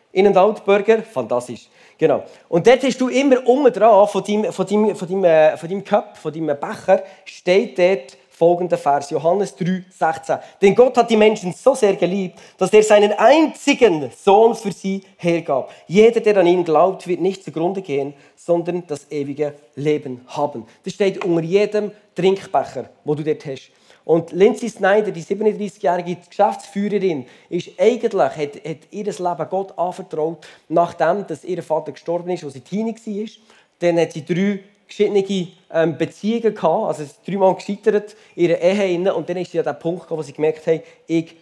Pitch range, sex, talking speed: 165-215 Hz, male, 175 wpm